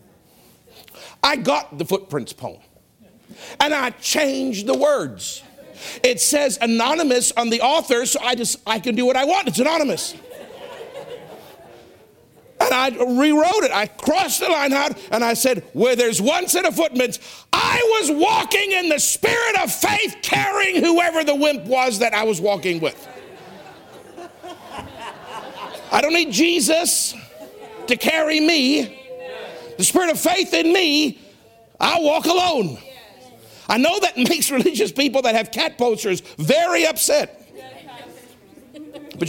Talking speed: 140 wpm